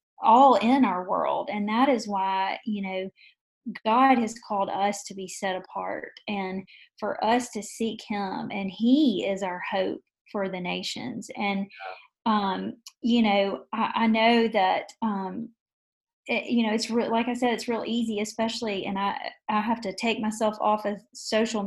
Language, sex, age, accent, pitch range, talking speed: English, female, 30-49, American, 200-235 Hz, 170 wpm